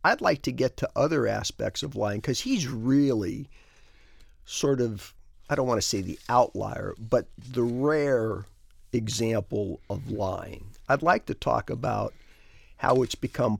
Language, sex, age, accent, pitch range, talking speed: English, male, 50-69, American, 95-125 Hz, 155 wpm